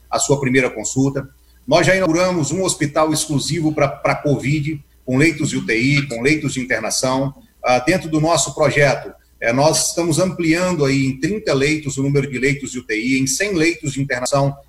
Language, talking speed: Portuguese, 170 wpm